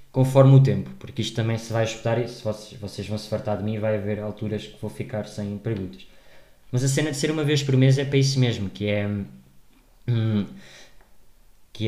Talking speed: 210 wpm